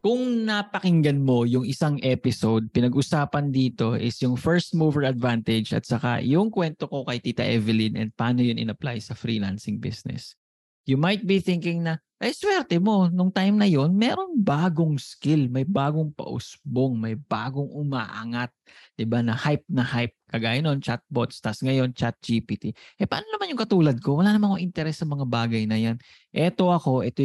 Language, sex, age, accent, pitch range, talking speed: English, male, 20-39, Filipino, 115-160 Hz, 165 wpm